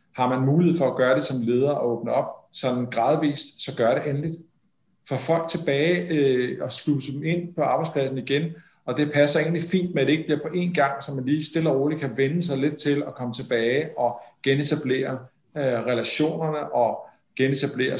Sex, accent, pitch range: male, native, 120-150 Hz